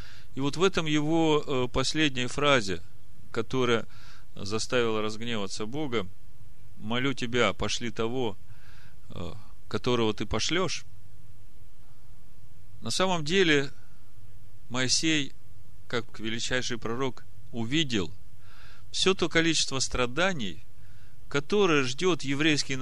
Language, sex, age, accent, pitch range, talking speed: Russian, male, 40-59, native, 105-140 Hz, 85 wpm